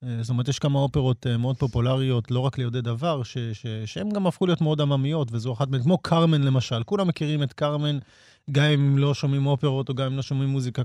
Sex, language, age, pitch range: male, Hebrew, 30-49, 125-155 Hz